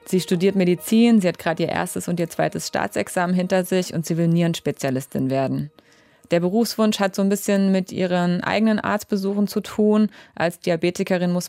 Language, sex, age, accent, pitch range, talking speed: German, female, 20-39, German, 165-195 Hz, 180 wpm